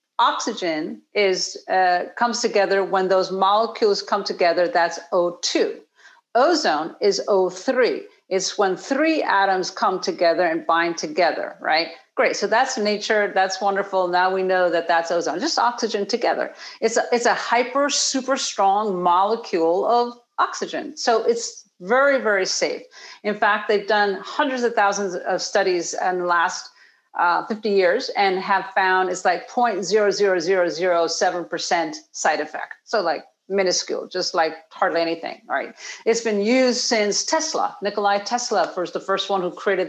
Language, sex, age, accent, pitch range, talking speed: English, female, 50-69, American, 180-230 Hz, 150 wpm